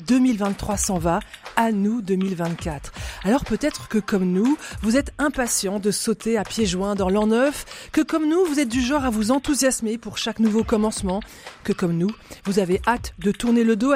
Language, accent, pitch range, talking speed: French, French, 185-250 Hz, 200 wpm